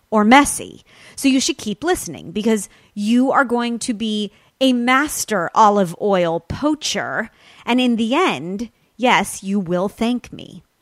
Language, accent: English, American